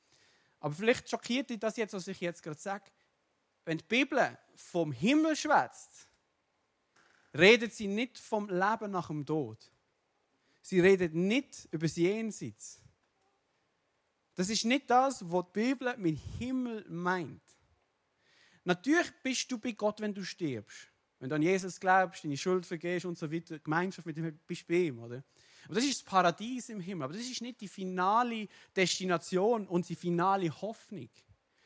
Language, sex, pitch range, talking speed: German, male, 170-230 Hz, 165 wpm